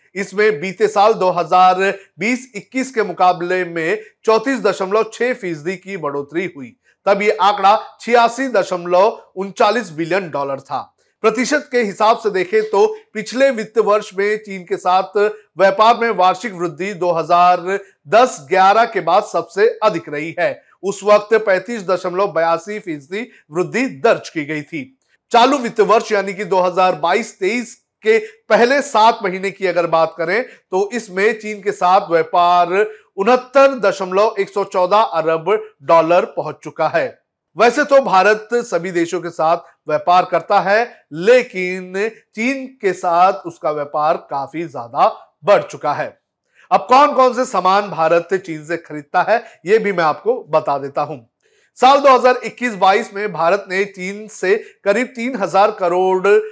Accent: native